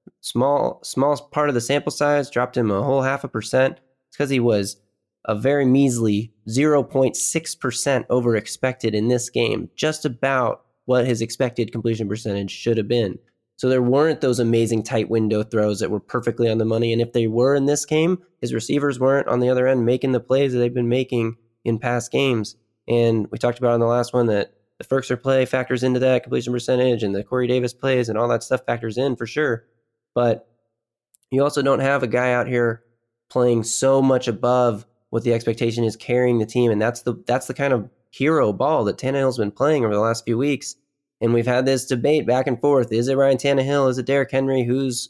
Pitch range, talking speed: 115-135 Hz, 210 wpm